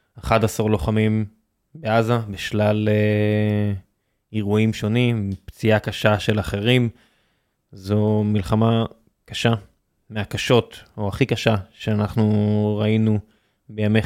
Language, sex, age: Hebrew, male, 20-39